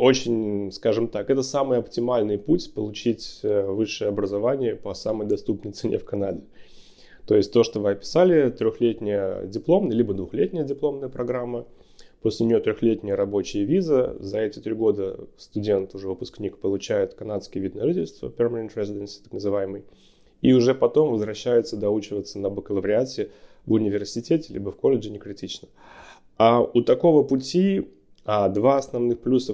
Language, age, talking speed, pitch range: Russian, 20-39, 140 wpm, 100-125 Hz